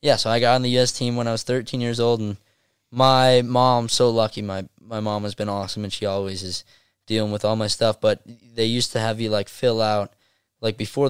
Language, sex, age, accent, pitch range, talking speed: English, male, 10-29, American, 100-115 Hz, 245 wpm